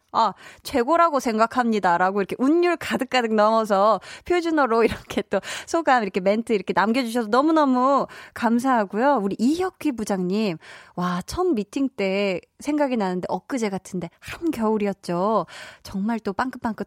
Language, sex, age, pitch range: Korean, female, 20-39, 190-275 Hz